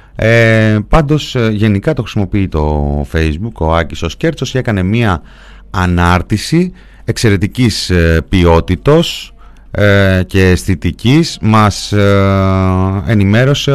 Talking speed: 110 wpm